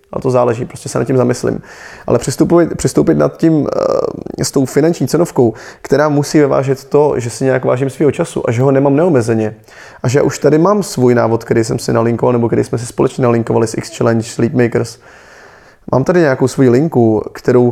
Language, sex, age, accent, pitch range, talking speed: Czech, male, 20-39, native, 120-140 Hz, 195 wpm